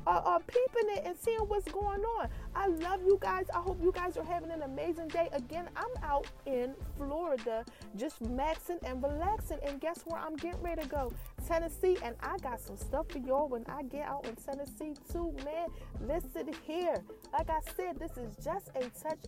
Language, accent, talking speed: English, American, 200 wpm